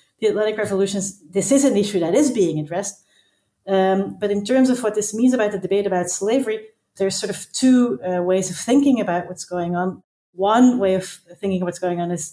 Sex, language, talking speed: female, English, 215 wpm